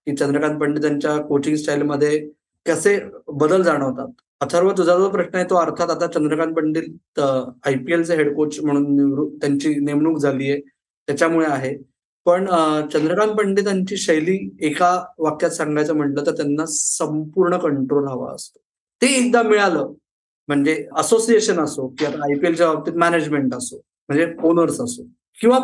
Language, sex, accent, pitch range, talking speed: Marathi, male, native, 155-220 Hz, 140 wpm